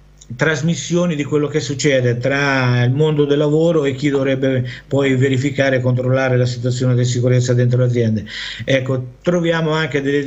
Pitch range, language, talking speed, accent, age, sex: 125-145 Hz, Italian, 160 wpm, native, 50-69, male